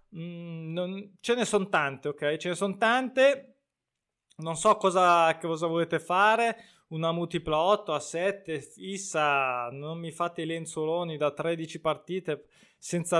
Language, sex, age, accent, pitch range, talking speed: Italian, male, 20-39, native, 150-190 Hz, 145 wpm